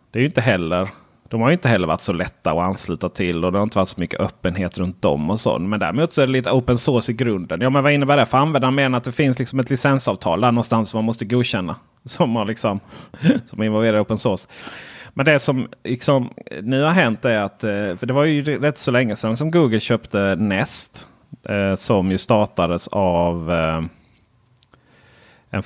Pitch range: 95-125 Hz